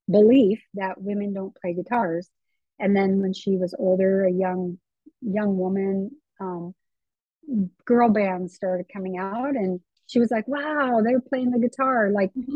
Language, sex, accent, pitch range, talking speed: English, female, American, 185-225 Hz, 155 wpm